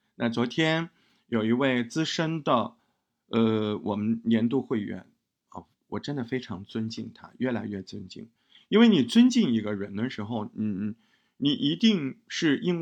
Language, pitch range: Chinese, 110-150 Hz